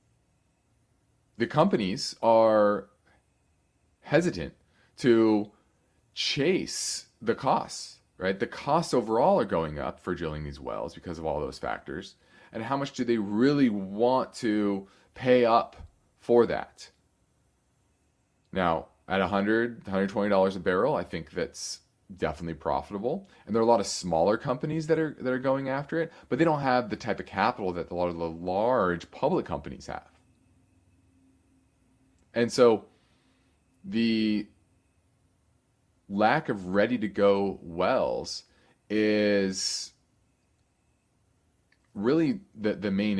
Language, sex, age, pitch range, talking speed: English, male, 30-49, 90-115 Hz, 130 wpm